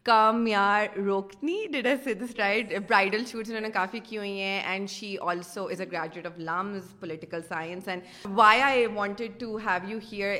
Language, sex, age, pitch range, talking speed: Urdu, female, 30-49, 175-215 Hz, 175 wpm